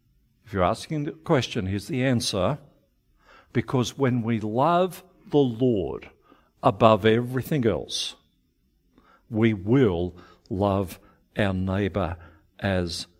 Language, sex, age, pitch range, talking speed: English, male, 60-79, 95-125 Hz, 105 wpm